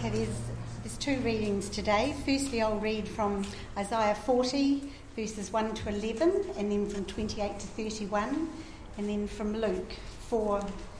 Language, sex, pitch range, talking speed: English, female, 185-250 Hz, 145 wpm